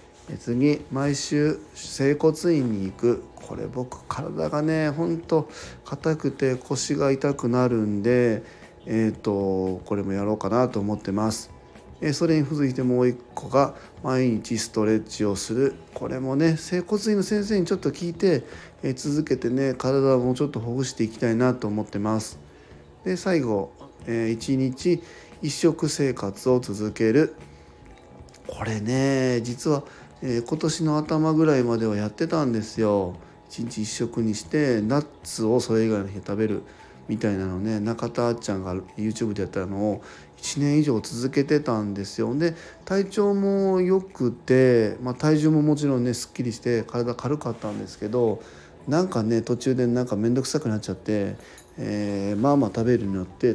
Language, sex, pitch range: Japanese, male, 110-150 Hz